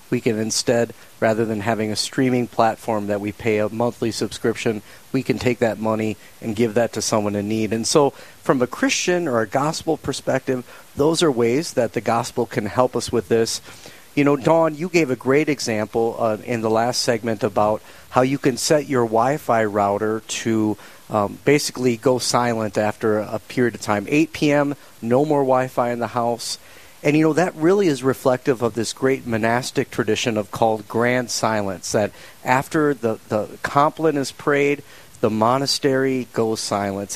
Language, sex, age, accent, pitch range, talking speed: English, male, 40-59, American, 110-135 Hz, 185 wpm